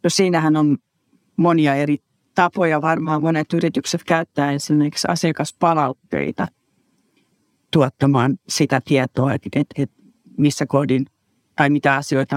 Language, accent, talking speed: Finnish, native, 100 wpm